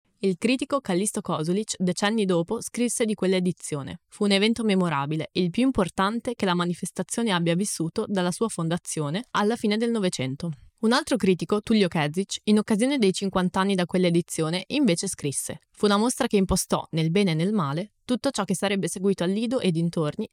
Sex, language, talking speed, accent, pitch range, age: female, Italian, 180 wpm, native, 170-220 Hz, 20-39